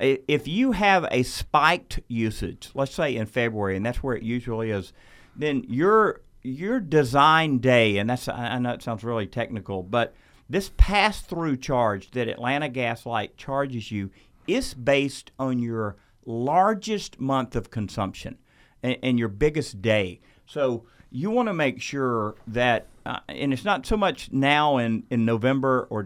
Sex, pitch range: male, 115-140 Hz